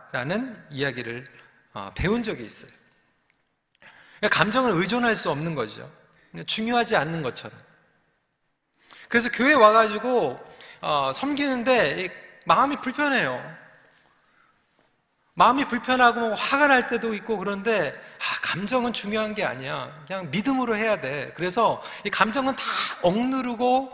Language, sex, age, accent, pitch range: Korean, male, 40-59, native, 180-240 Hz